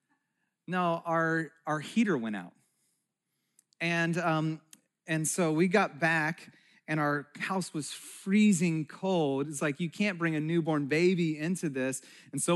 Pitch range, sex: 155-200 Hz, male